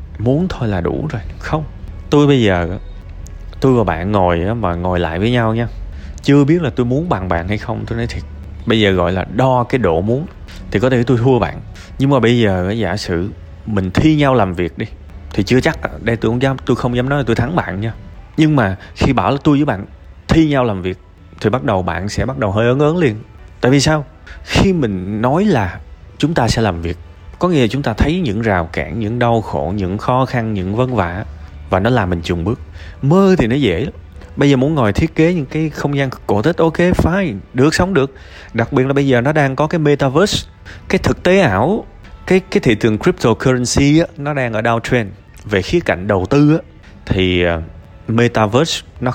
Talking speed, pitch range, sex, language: 225 wpm, 95-135 Hz, male, Vietnamese